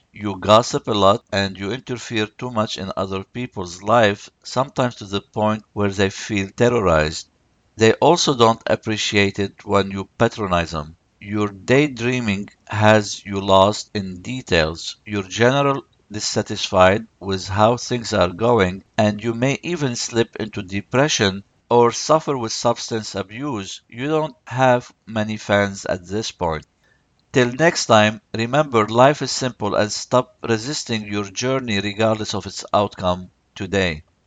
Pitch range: 100-120 Hz